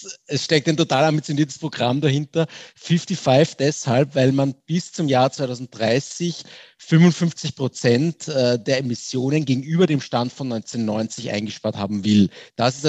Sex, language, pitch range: male, German, 120-150 Hz